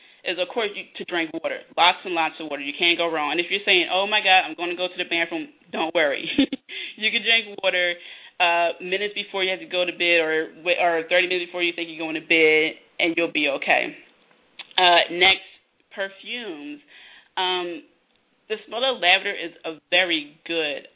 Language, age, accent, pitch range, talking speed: English, 20-39, American, 170-205 Hz, 205 wpm